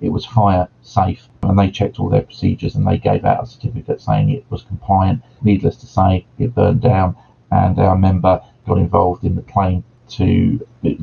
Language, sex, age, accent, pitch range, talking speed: English, male, 40-59, British, 90-110 Hz, 195 wpm